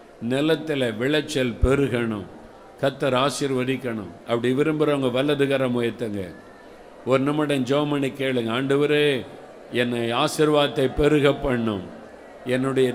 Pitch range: 130-175 Hz